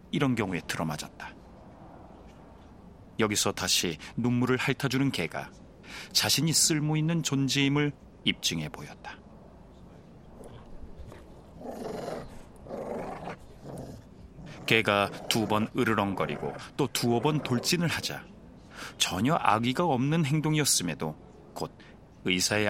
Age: 40-59